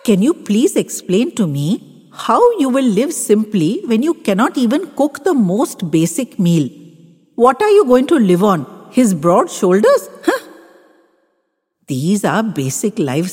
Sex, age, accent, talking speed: female, 50-69, Indian, 160 wpm